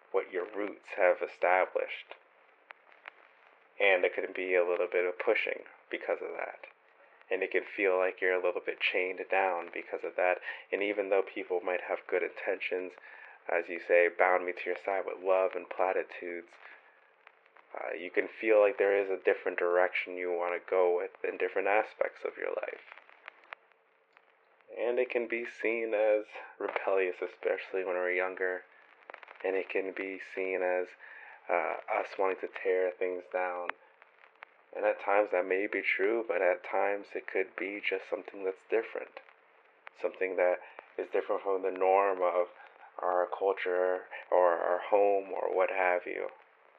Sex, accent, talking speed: male, American, 165 wpm